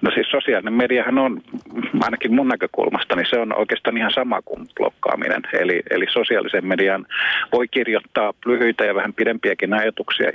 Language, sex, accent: Finnish, male, native